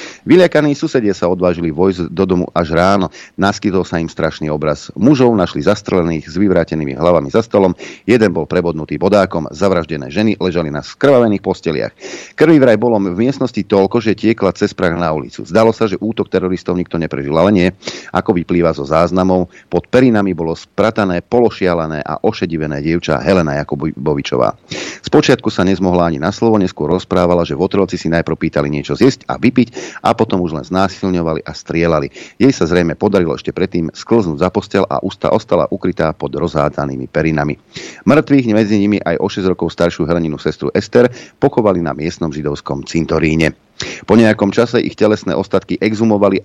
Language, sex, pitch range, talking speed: Slovak, male, 80-105 Hz, 170 wpm